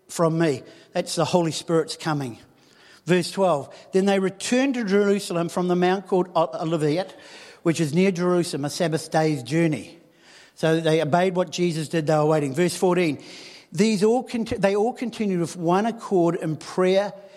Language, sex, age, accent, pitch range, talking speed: English, male, 50-69, Australian, 165-195 Hz, 165 wpm